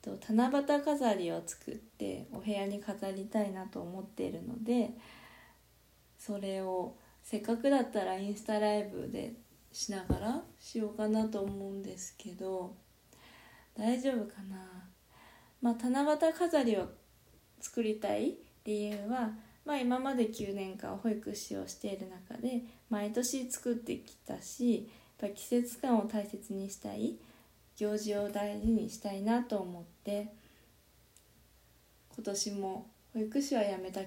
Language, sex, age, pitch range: Japanese, female, 20-39, 195-235 Hz